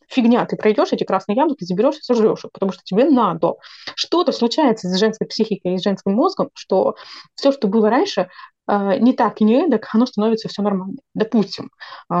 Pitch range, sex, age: 205-250 Hz, female, 20-39